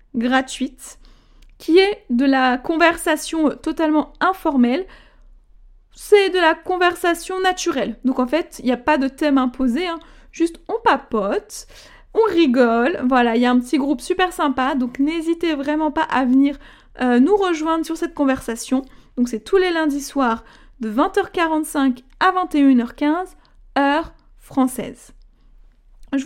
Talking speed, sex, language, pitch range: 145 wpm, female, French, 260-345 Hz